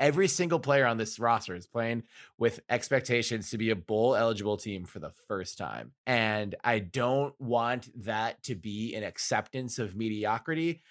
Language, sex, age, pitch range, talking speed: English, male, 20-39, 105-125 Hz, 170 wpm